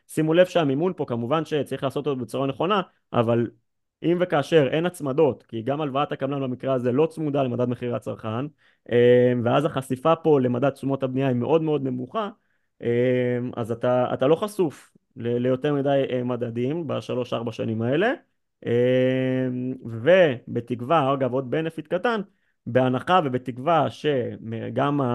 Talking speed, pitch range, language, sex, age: 135 wpm, 125-155 Hz, Hebrew, male, 30-49